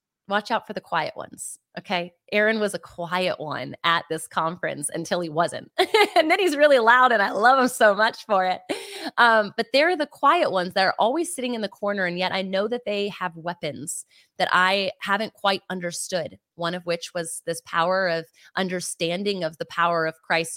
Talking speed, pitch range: 205 wpm, 175-220 Hz